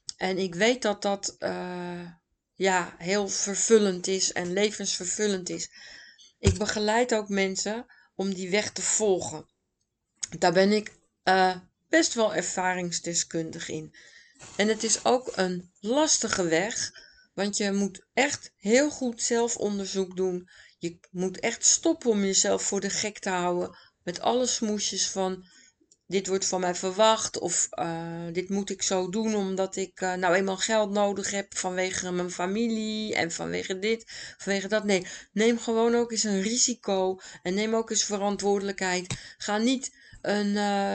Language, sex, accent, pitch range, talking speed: Dutch, female, Dutch, 185-220 Hz, 150 wpm